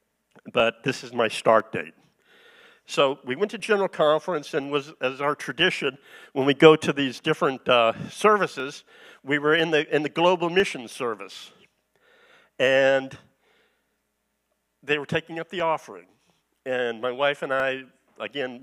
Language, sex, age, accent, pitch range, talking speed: English, male, 50-69, American, 125-155 Hz, 150 wpm